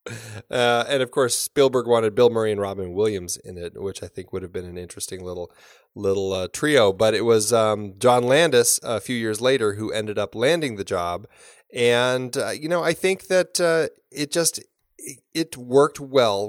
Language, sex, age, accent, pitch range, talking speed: English, male, 30-49, American, 100-135 Hz, 195 wpm